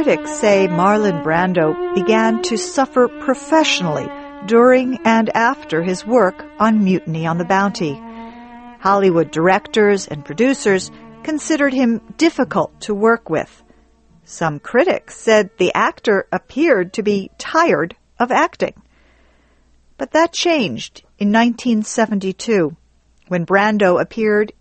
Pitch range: 175-240 Hz